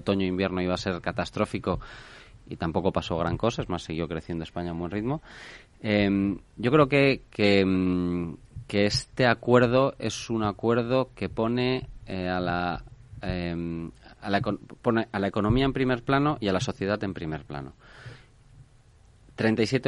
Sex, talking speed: male, 165 wpm